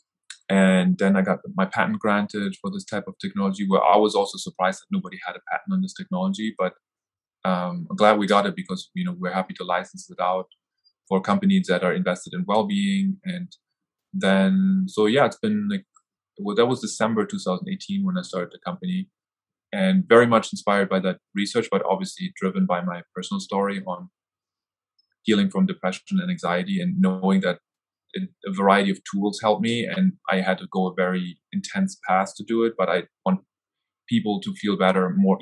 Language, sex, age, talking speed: English, male, 20-39, 195 wpm